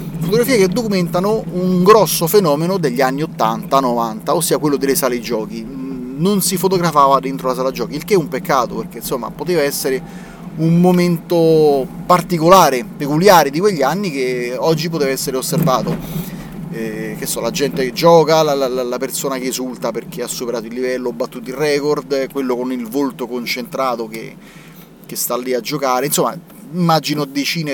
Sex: male